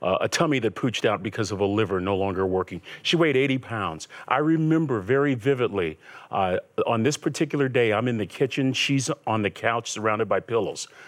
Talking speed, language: 200 wpm, English